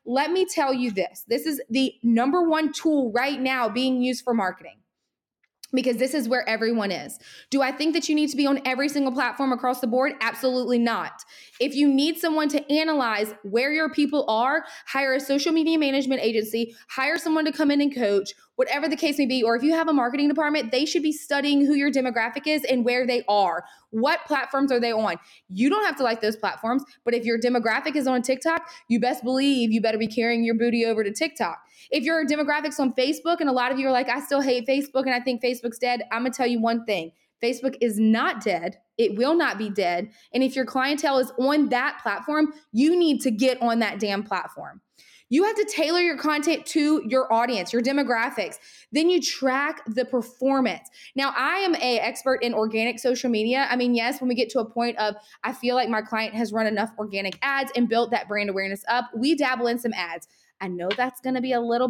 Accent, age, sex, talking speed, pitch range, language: American, 20-39, female, 230 wpm, 230-285 Hz, English